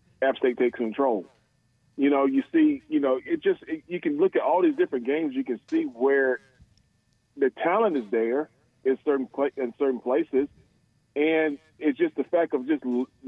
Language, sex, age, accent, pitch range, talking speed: English, male, 40-59, American, 120-150 Hz, 180 wpm